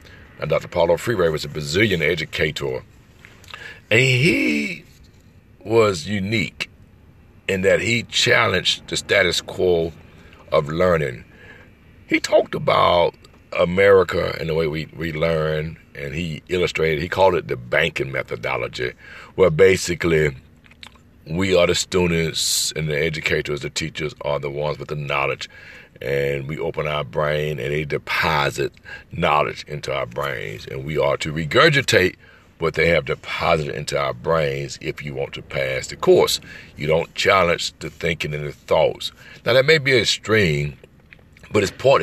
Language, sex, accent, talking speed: English, male, American, 150 wpm